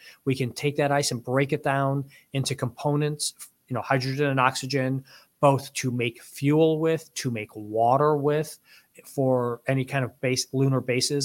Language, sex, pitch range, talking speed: English, male, 130-155 Hz, 170 wpm